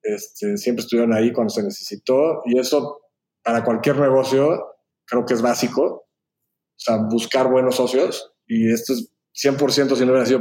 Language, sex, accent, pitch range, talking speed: Spanish, male, Mexican, 120-140 Hz, 165 wpm